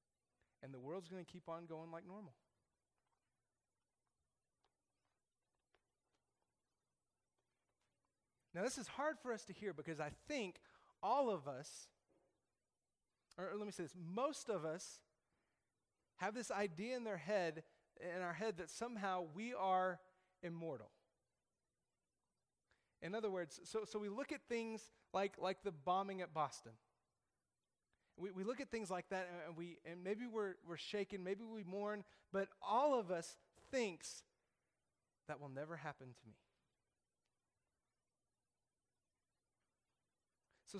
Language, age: English, 30-49